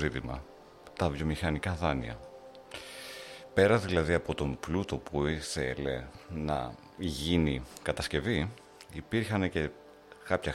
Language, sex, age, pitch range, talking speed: Greek, male, 50-69, 75-100 Hz, 90 wpm